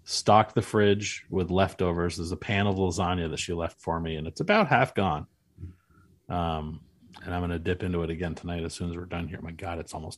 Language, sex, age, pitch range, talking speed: English, male, 30-49, 85-100 Hz, 240 wpm